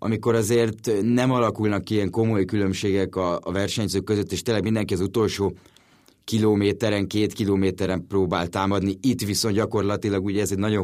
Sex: male